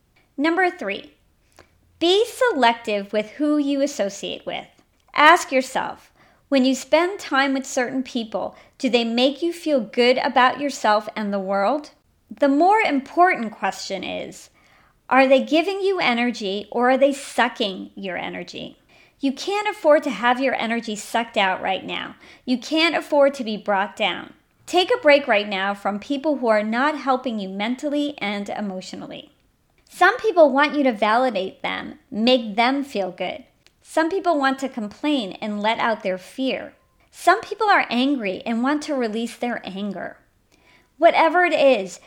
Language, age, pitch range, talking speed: English, 40-59, 215-295 Hz, 160 wpm